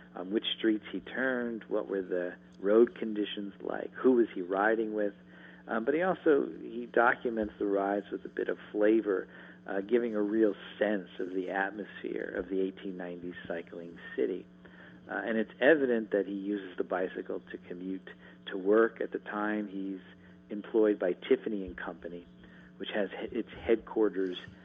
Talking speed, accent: 170 wpm, American